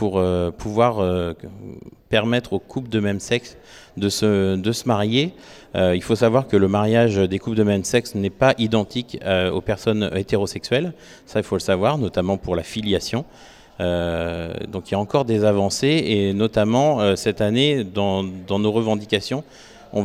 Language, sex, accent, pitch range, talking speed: French, male, French, 90-115 Hz, 180 wpm